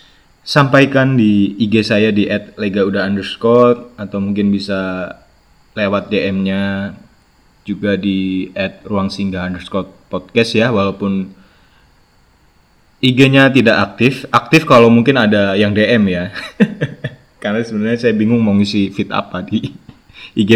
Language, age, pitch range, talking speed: Indonesian, 20-39, 100-120 Hz, 125 wpm